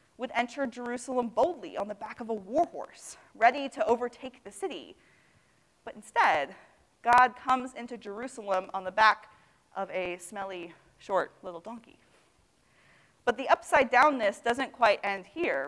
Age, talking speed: 30-49, 145 wpm